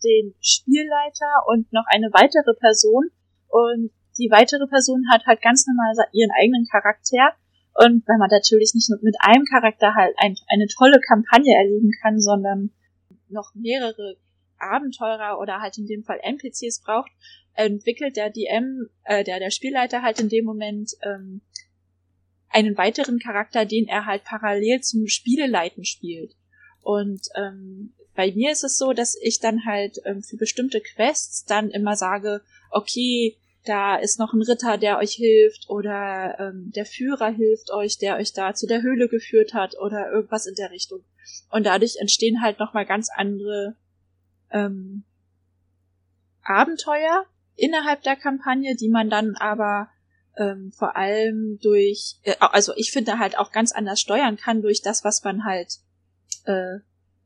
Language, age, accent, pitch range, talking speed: German, 20-39, German, 200-230 Hz, 155 wpm